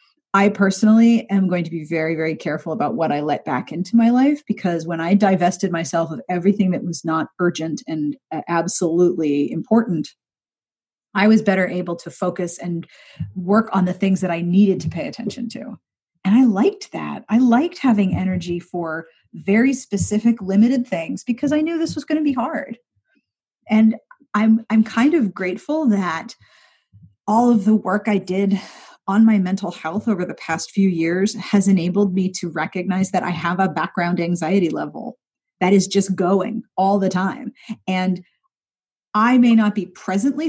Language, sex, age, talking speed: English, female, 30-49, 175 wpm